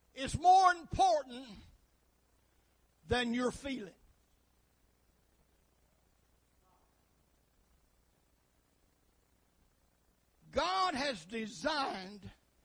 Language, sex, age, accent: English, male, 60-79, American